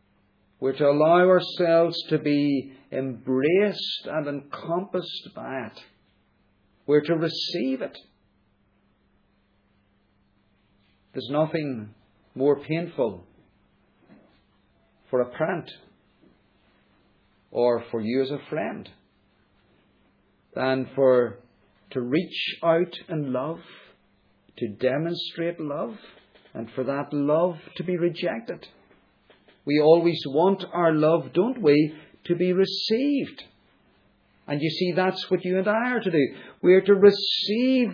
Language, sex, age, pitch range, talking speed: English, male, 50-69, 120-170 Hz, 110 wpm